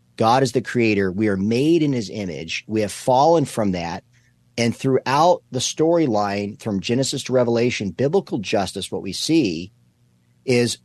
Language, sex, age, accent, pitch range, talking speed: English, male, 40-59, American, 100-135 Hz, 160 wpm